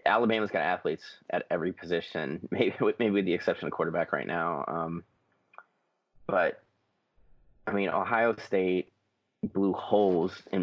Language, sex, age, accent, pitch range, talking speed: English, male, 30-49, American, 90-100 Hz, 135 wpm